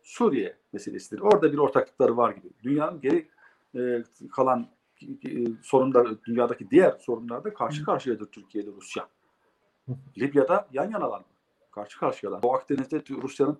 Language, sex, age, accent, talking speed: German, male, 50-69, Turkish, 130 wpm